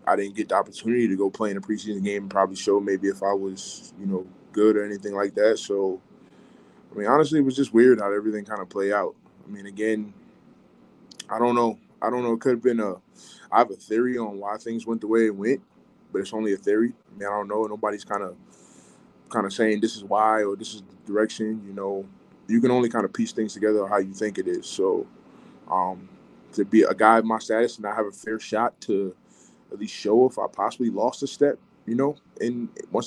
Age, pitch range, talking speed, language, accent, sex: 20-39, 100-120 Hz, 245 wpm, English, American, male